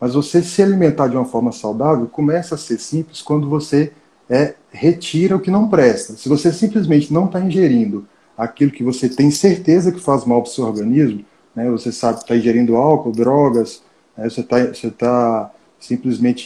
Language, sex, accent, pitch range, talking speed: Portuguese, male, Brazilian, 120-155 Hz, 190 wpm